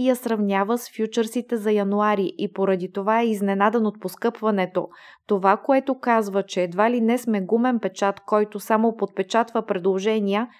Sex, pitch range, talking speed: female, 200-230 Hz, 160 wpm